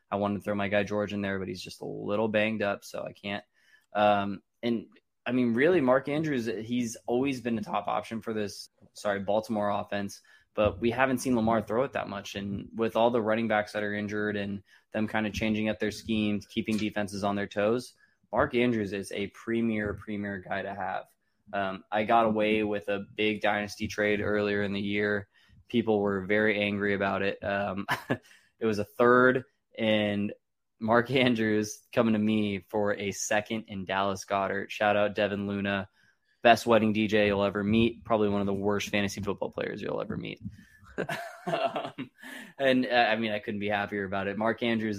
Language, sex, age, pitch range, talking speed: English, male, 20-39, 100-110 Hz, 195 wpm